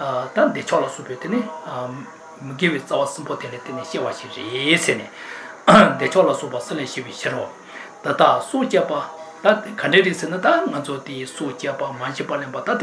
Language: English